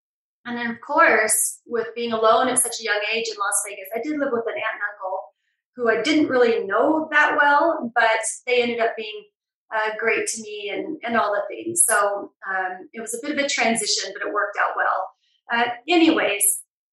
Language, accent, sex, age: English, American, female, 30-49